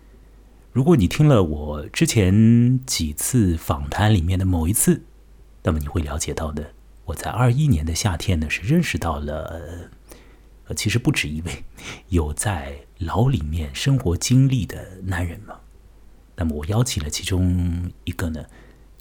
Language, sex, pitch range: Chinese, male, 80-115 Hz